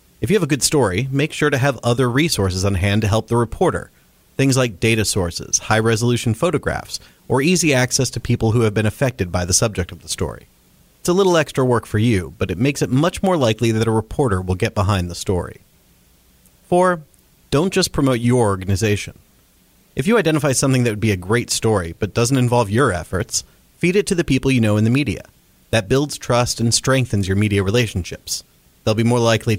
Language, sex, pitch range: English, male, 100-130 Hz